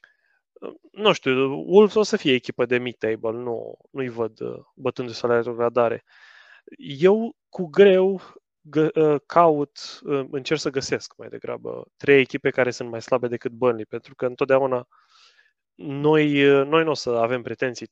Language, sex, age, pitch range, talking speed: Romanian, male, 20-39, 125-160 Hz, 145 wpm